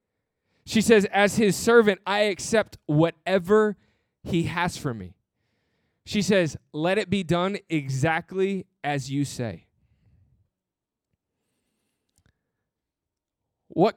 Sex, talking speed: male, 100 wpm